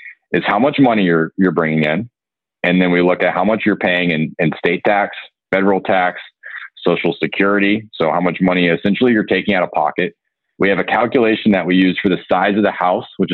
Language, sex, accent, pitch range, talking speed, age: English, male, American, 90-115 Hz, 220 wpm, 30-49